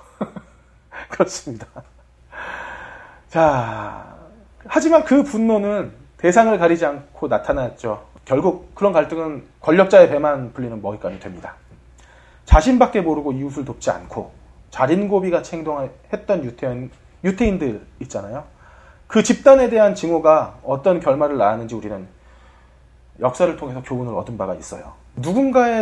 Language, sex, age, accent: Korean, male, 30-49, native